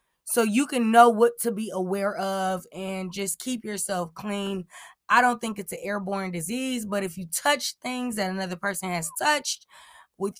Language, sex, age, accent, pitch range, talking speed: English, female, 20-39, American, 200-245 Hz, 185 wpm